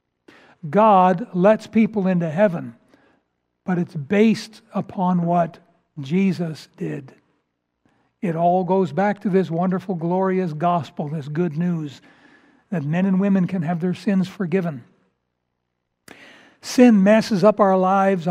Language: English